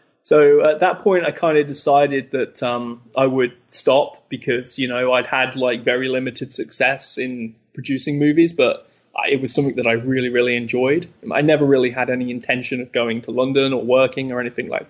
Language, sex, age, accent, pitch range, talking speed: English, male, 20-39, British, 120-140 Hz, 200 wpm